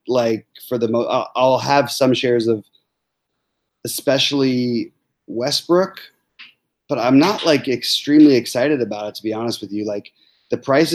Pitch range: 110-140 Hz